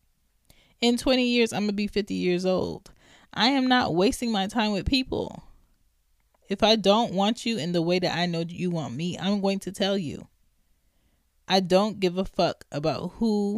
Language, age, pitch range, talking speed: English, 20-39, 150-195 Hz, 190 wpm